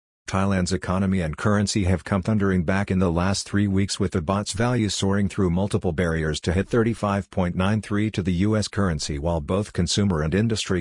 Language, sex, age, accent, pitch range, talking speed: English, male, 50-69, American, 90-105 Hz, 185 wpm